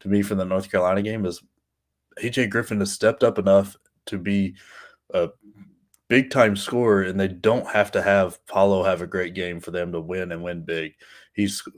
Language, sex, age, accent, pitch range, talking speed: English, male, 20-39, American, 95-105 Hz, 200 wpm